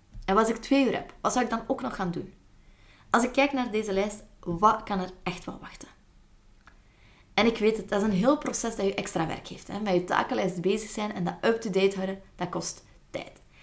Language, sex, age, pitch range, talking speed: Dutch, female, 20-39, 180-230 Hz, 230 wpm